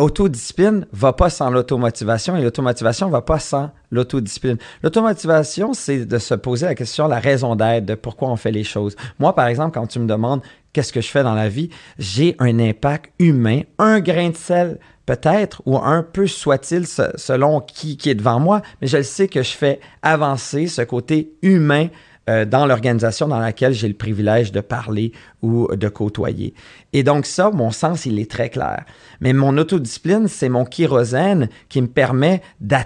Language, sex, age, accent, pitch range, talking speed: French, male, 40-59, Canadian, 115-155 Hz, 190 wpm